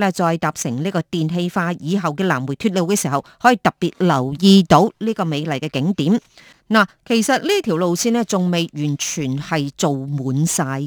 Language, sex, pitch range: Chinese, female, 155-220 Hz